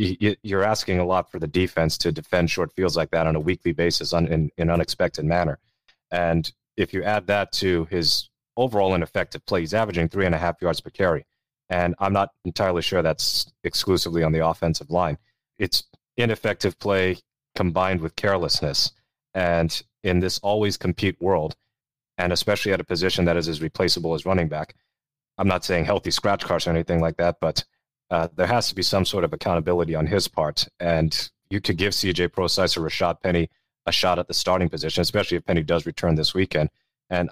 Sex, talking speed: male, 195 wpm